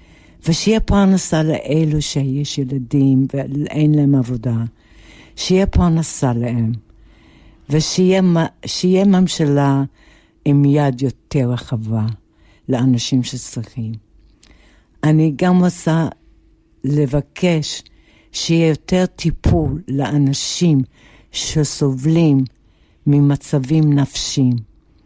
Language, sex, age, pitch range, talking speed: Hebrew, female, 60-79, 115-165 Hz, 70 wpm